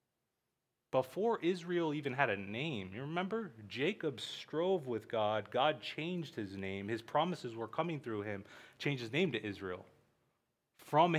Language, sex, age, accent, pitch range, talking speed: English, male, 30-49, American, 140-190 Hz, 150 wpm